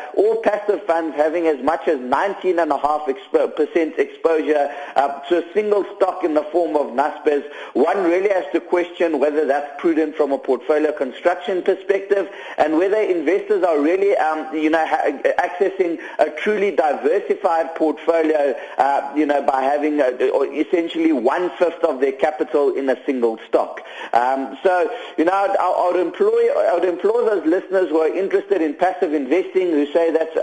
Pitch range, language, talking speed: 150-200 Hz, English, 155 wpm